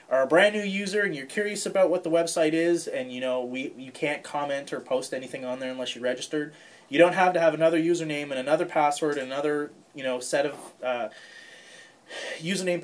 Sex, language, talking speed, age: male, English, 215 wpm, 30-49